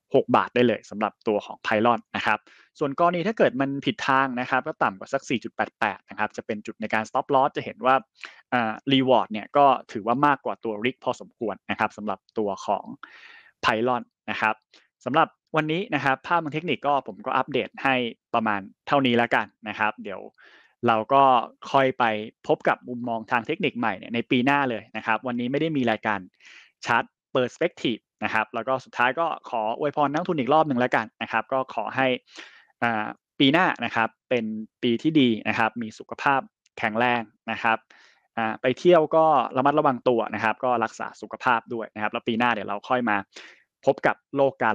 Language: Thai